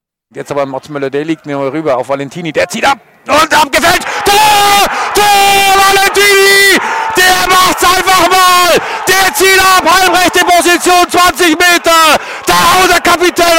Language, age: German, 50-69